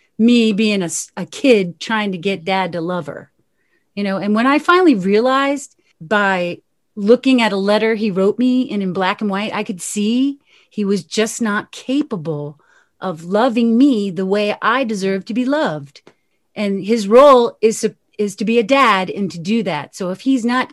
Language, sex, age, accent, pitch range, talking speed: English, female, 40-59, American, 195-260 Hz, 195 wpm